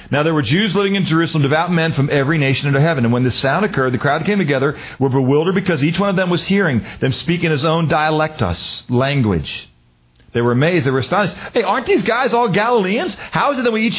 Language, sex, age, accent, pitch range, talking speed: English, male, 40-59, American, 135-195 Hz, 245 wpm